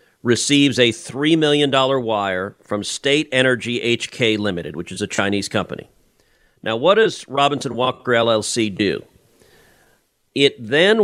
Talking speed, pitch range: 130 wpm, 115-145 Hz